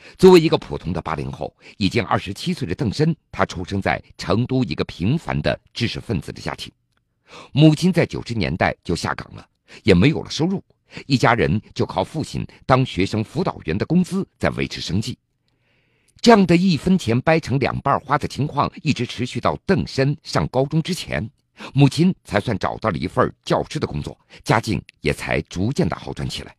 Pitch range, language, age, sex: 105-160 Hz, Chinese, 50-69, male